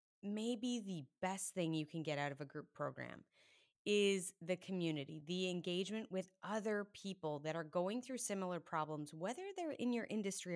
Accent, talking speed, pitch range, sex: American, 175 wpm, 165-210 Hz, female